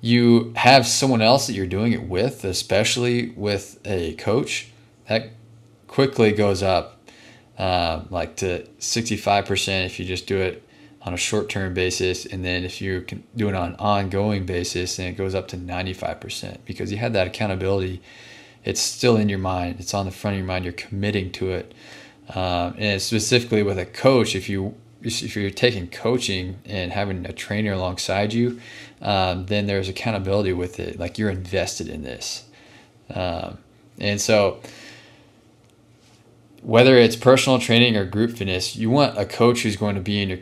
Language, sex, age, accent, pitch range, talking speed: English, male, 20-39, American, 95-115 Hz, 175 wpm